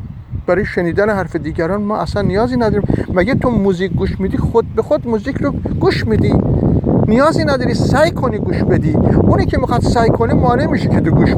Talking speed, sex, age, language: 190 wpm, male, 50-69, Persian